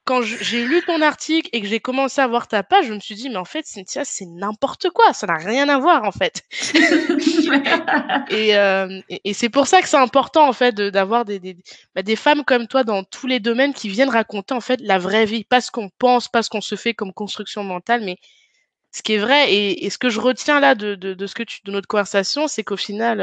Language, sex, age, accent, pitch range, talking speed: French, female, 20-39, French, 205-270 Hz, 260 wpm